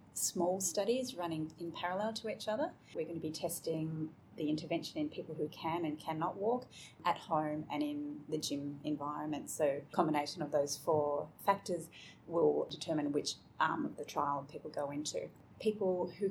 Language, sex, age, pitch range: English, female, 30-49, 155-215 Hz